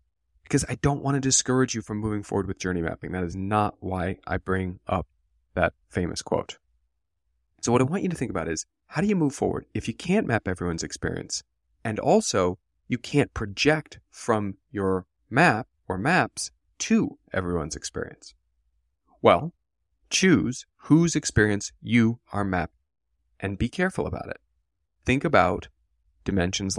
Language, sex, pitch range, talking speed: English, male, 85-135 Hz, 160 wpm